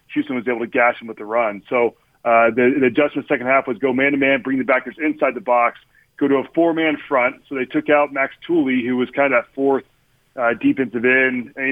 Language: English